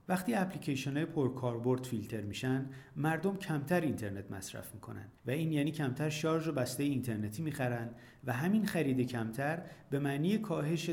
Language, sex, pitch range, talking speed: Persian, male, 120-160 Hz, 145 wpm